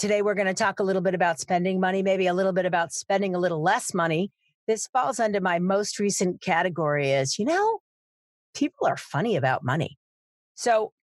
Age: 40-59